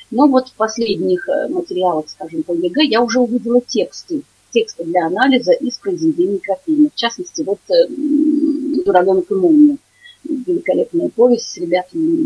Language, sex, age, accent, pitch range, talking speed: Russian, female, 30-49, native, 205-290 Hz, 130 wpm